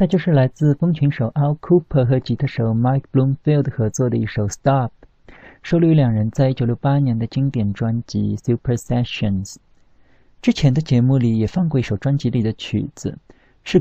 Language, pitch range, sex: Chinese, 115-145 Hz, male